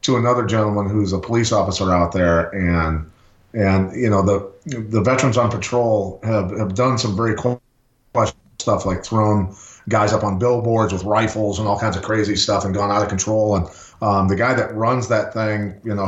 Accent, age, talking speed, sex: American, 30-49, 200 wpm, male